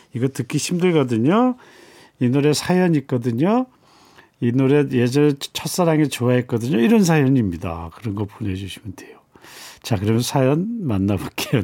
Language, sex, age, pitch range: Korean, male, 40-59, 115-155 Hz